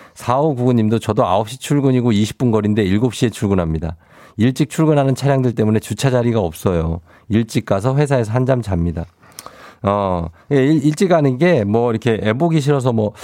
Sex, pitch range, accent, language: male, 100-135 Hz, native, Korean